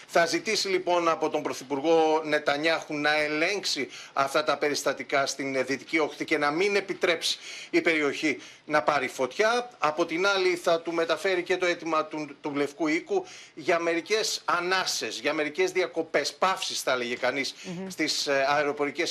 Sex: male